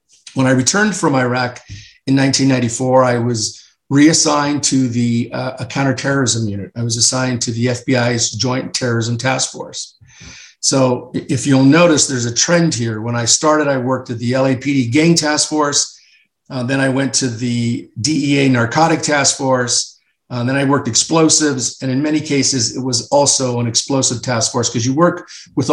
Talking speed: 175 wpm